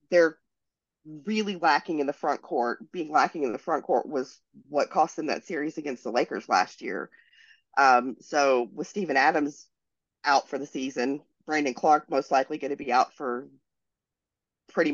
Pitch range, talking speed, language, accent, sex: 135-180 Hz, 175 wpm, English, American, female